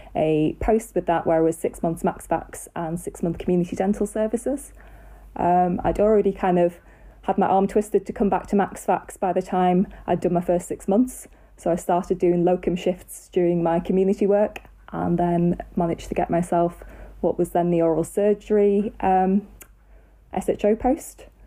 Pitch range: 175-215 Hz